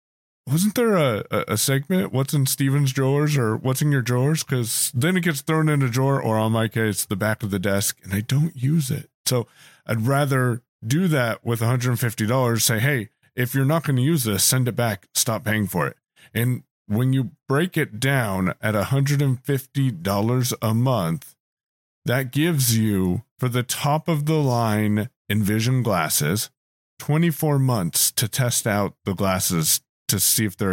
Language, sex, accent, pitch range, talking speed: English, male, American, 110-145 Hz, 180 wpm